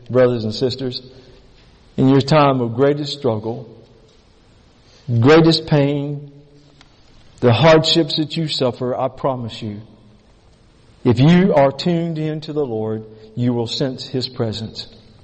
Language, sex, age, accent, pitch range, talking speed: English, male, 50-69, American, 145-200 Hz, 125 wpm